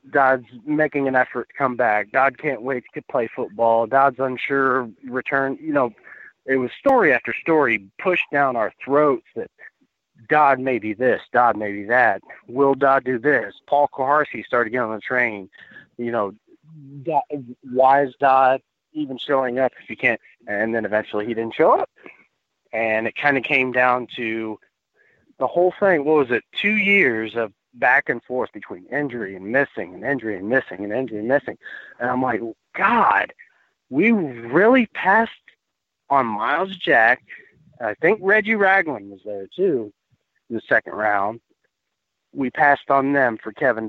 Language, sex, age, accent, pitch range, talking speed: English, male, 30-49, American, 120-150 Hz, 170 wpm